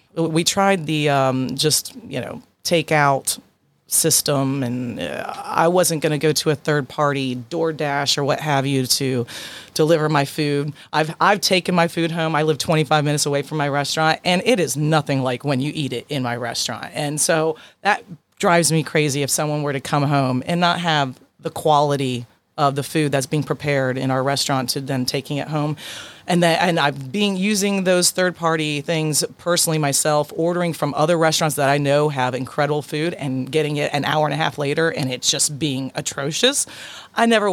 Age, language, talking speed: 30-49, English, 195 wpm